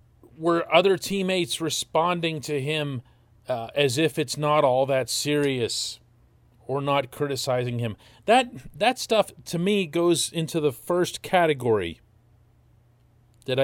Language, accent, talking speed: English, American, 130 wpm